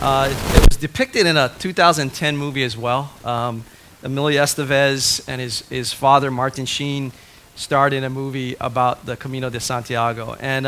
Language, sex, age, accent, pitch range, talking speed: English, male, 30-49, American, 125-150 Hz, 170 wpm